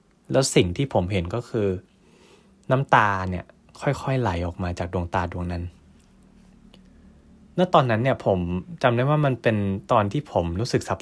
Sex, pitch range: male, 95-120 Hz